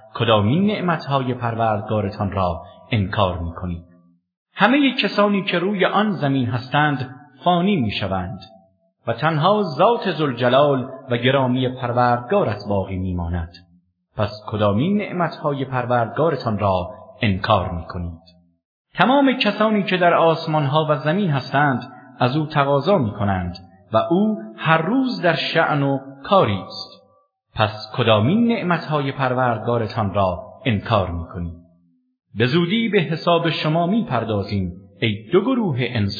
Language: English